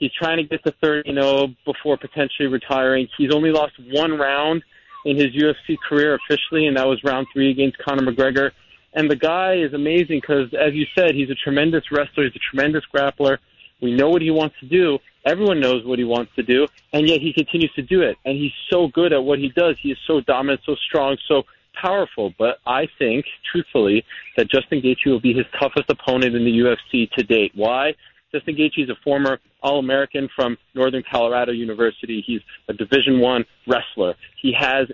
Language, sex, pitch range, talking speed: English, male, 130-160 Hz, 200 wpm